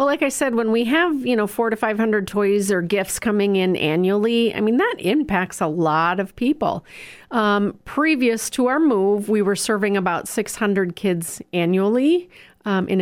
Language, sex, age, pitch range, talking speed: English, female, 40-59, 180-215 Hz, 190 wpm